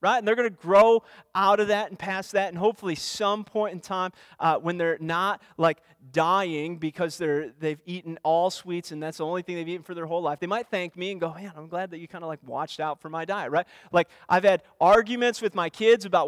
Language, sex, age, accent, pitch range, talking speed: English, male, 30-49, American, 165-235 Hz, 255 wpm